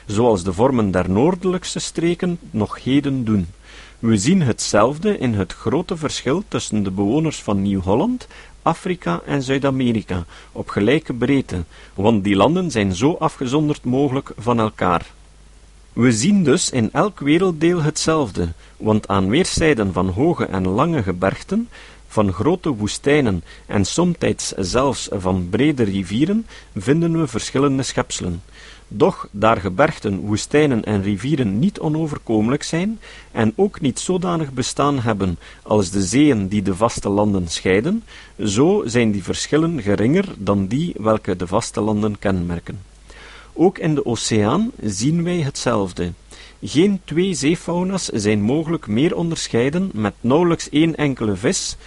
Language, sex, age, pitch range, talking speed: Dutch, male, 50-69, 100-155 Hz, 135 wpm